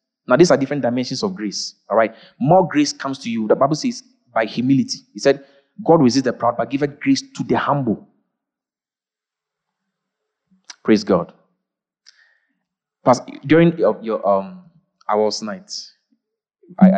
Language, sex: English, male